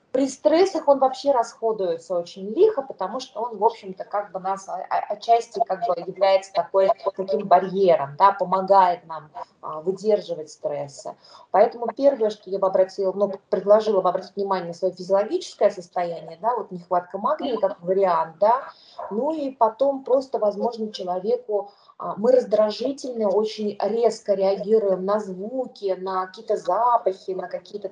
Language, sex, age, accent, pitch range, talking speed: Russian, female, 20-39, native, 185-230 Hz, 145 wpm